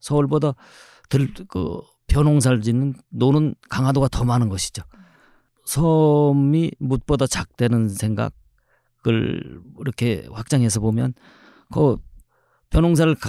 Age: 40-59